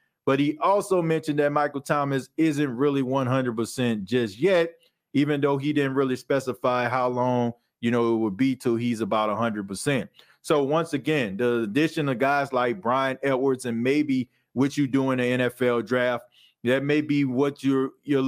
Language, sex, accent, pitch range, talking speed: English, male, American, 125-140 Hz, 175 wpm